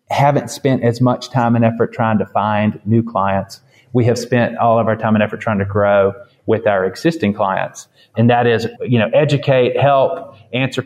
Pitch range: 105-125 Hz